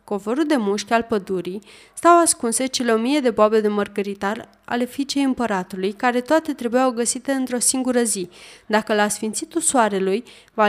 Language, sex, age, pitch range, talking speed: Romanian, female, 20-39, 210-285 Hz, 165 wpm